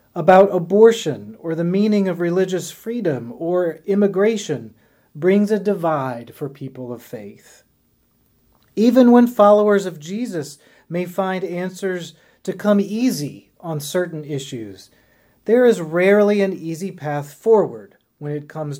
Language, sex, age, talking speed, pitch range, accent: English, male, 30-49, 130 wpm, 150-200 Hz, American